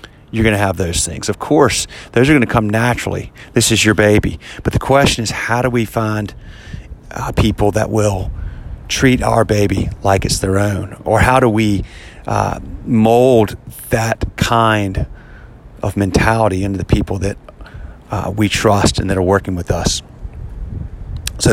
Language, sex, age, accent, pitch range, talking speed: English, male, 40-59, American, 95-110 Hz, 170 wpm